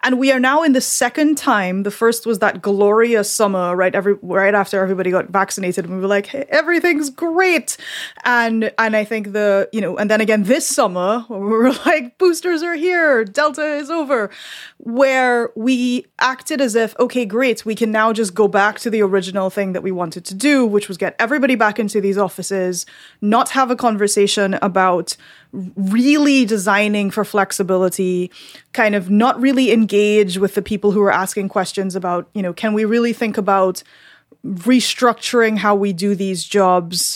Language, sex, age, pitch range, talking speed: English, female, 20-39, 195-250 Hz, 180 wpm